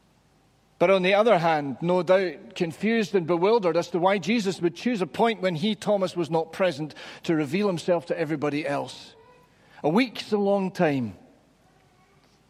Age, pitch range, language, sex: 40-59, 145-200 Hz, English, male